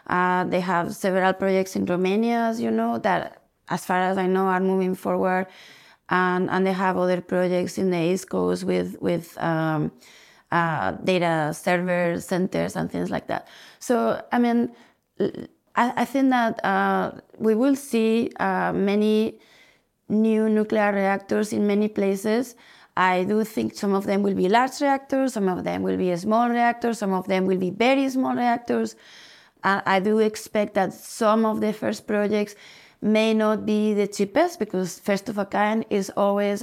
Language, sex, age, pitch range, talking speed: English, female, 30-49, 190-220 Hz, 165 wpm